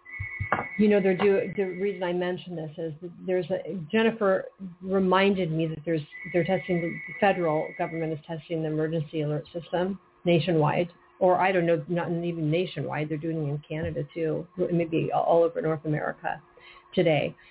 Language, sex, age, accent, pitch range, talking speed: English, female, 40-59, American, 160-180 Hz, 165 wpm